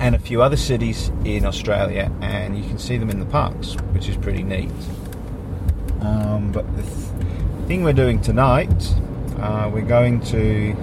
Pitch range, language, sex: 95-115 Hz, English, male